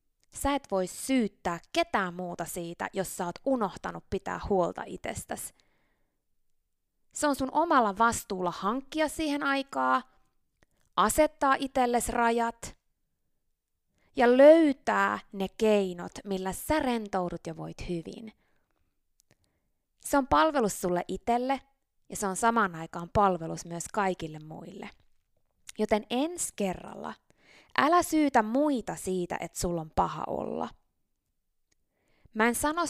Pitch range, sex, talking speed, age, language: 180-250 Hz, female, 115 wpm, 20-39, Finnish